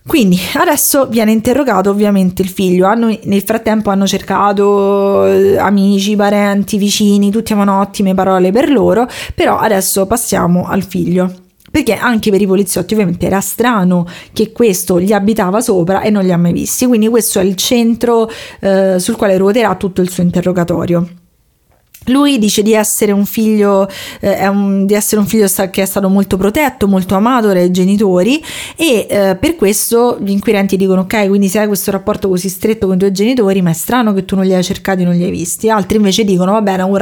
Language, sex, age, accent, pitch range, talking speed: Italian, female, 20-39, native, 190-215 Hz, 195 wpm